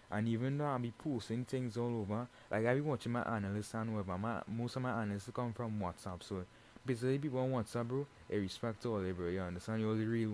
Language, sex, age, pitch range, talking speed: English, male, 20-39, 105-130 Hz, 240 wpm